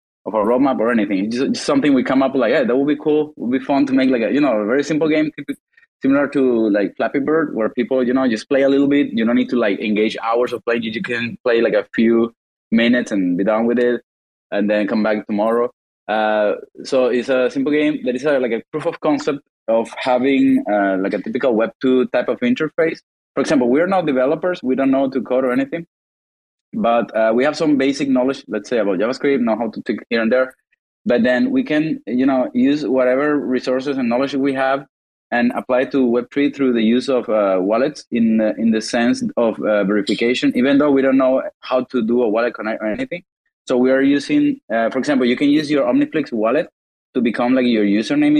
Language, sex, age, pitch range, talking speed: English, male, 20-39, 120-145 Hz, 235 wpm